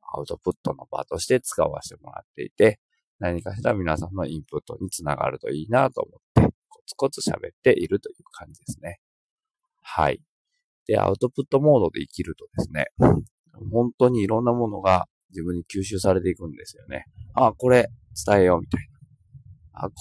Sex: male